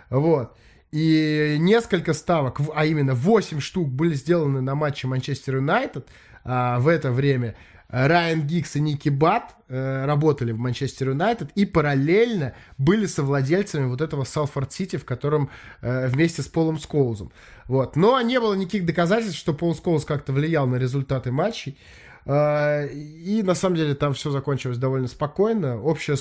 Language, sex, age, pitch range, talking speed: Russian, male, 20-39, 130-170 Hz, 145 wpm